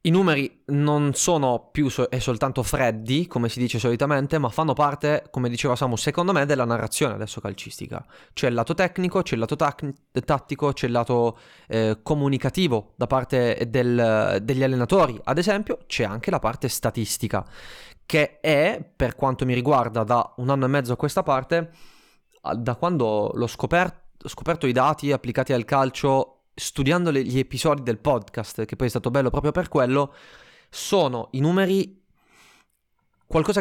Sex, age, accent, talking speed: male, 20-39, native, 165 wpm